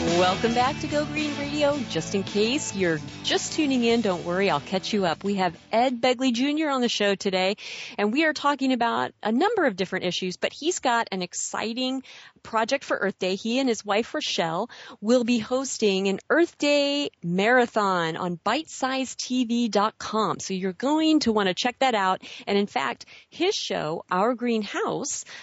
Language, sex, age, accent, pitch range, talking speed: English, female, 40-59, American, 190-255 Hz, 180 wpm